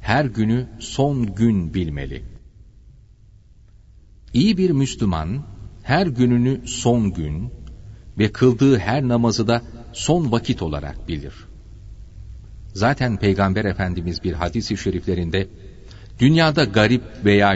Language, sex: Turkish, male